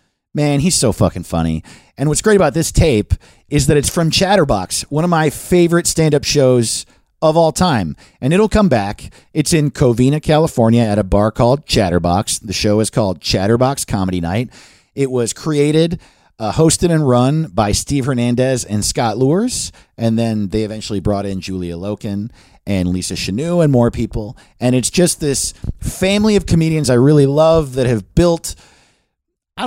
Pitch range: 115-170 Hz